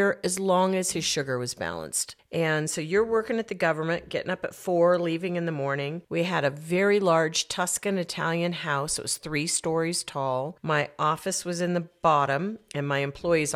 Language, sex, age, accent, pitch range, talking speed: English, female, 40-59, American, 145-190 Hz, 195 wpm